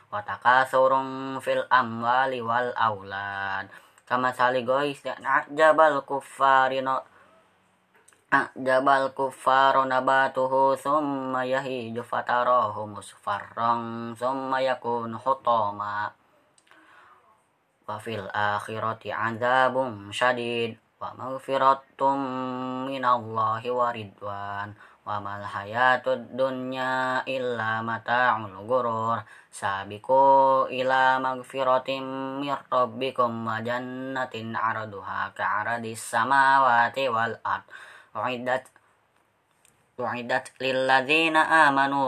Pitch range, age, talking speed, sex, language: 115-130 Hz, 20-39, 75 wpm, female, Indonesian